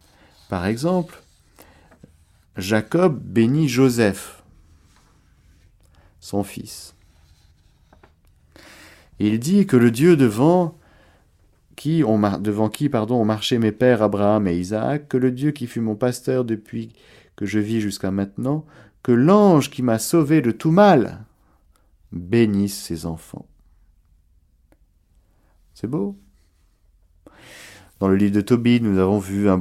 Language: French